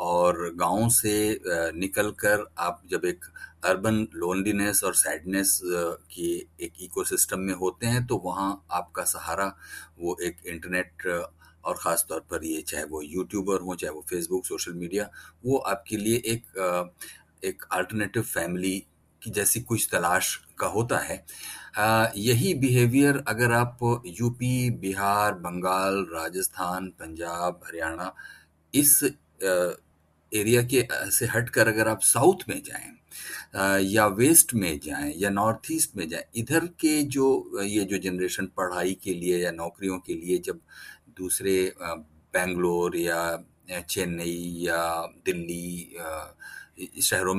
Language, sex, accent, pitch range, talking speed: Hindi, male, native, 90-120 Hz, 130 wpm